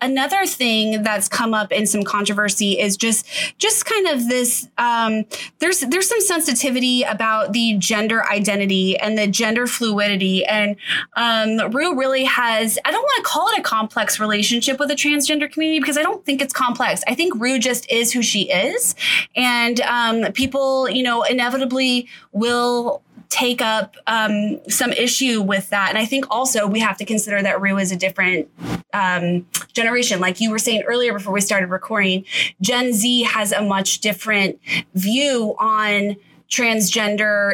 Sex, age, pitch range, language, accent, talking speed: female, 20-39, 195-245 Hz, English, American, 170 wpm